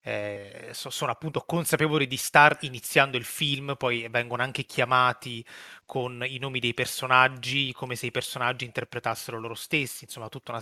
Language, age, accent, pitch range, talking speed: Italian, 30-49, native, 120-145 Hz, 165 wpm